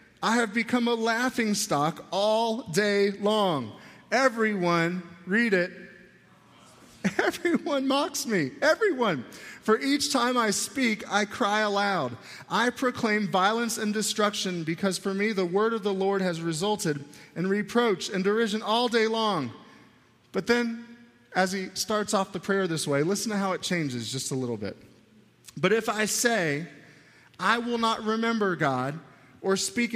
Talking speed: 150 wpm